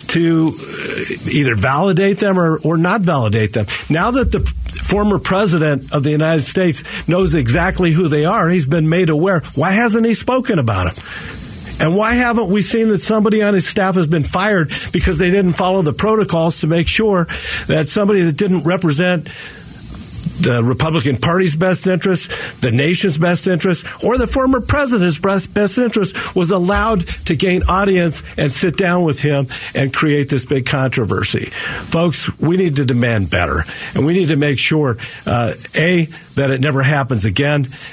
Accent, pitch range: American, 130-180 Hz